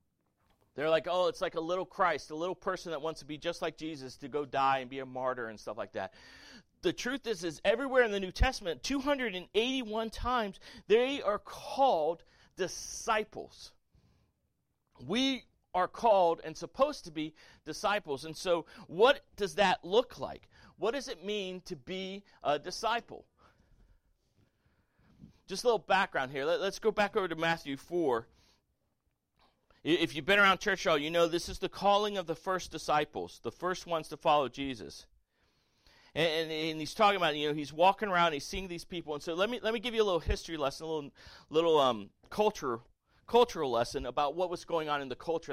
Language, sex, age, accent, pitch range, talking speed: English, male, 40-59, American, 150-200 Hz, 190 wpm